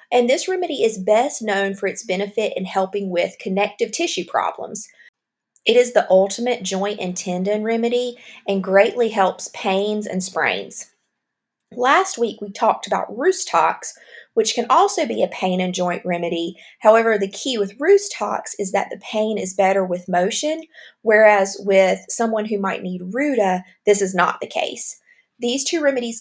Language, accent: English, American